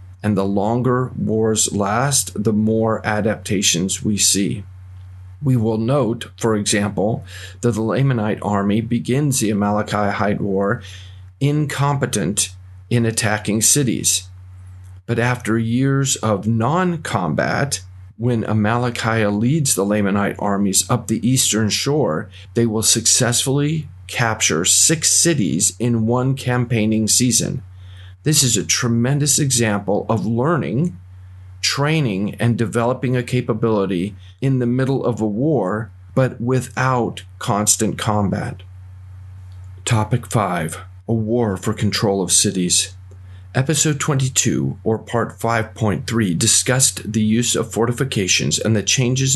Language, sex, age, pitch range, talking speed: English, male, 40-59, 95-120 Hz, 115 wpm